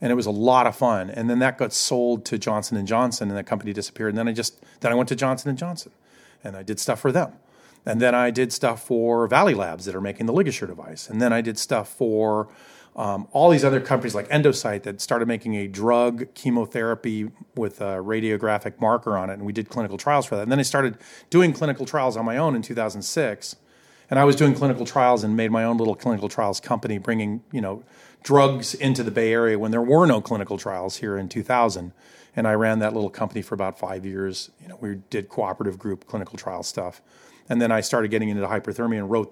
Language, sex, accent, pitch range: English, male, American, 105-120 Hz